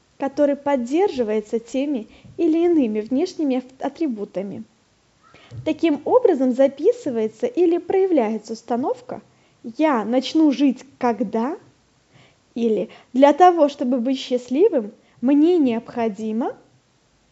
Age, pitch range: 10-29, 240-325 Hz